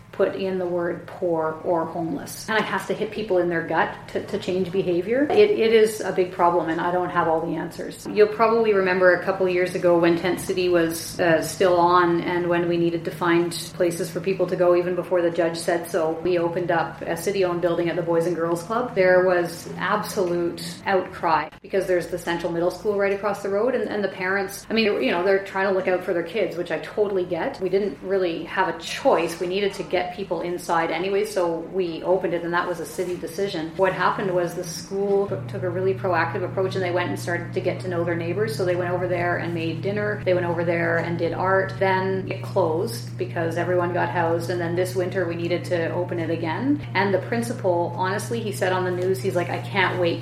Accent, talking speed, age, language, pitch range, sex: American, 240 wpm, 30-49, English, 170-190 Hz, female